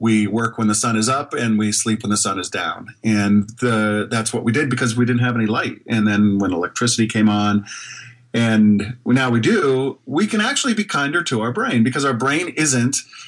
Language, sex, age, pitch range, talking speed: English, male, 40-59, 105-125 Hz, 220 wpm